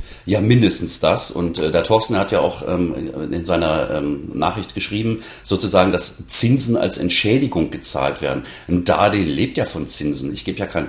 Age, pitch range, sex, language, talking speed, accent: 40-59, 85-110 Hz, male, German, 180 wpm, German